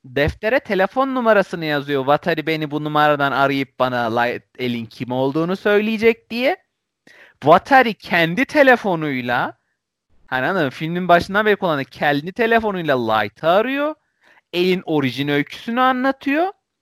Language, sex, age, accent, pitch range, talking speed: Turkish, male, 40-59, native, 145-230 Hz, 120 wpm